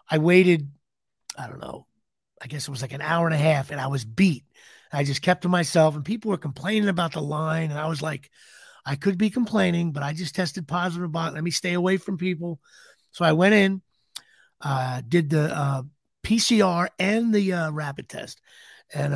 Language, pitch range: English, 145-185 Hz